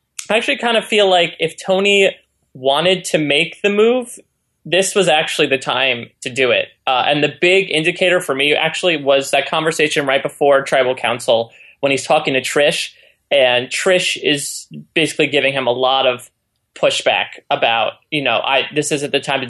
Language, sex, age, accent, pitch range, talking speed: English, male, 20-39, American, 130-165 Hz, 180 wpm